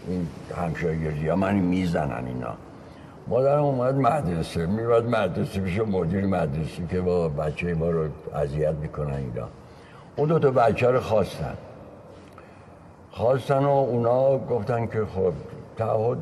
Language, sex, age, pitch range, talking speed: Persian, male, 60-79, 95-140 Hz, 130 wpm